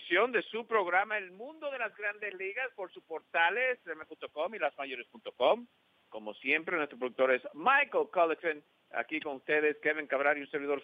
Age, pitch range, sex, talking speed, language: 50-69, 110-155 Hz, male, 170 wpm, English